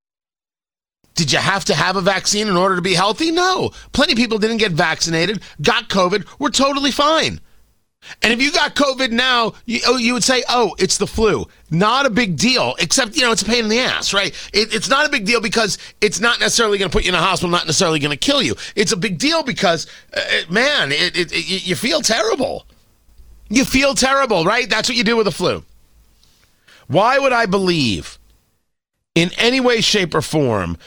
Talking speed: 205 wpm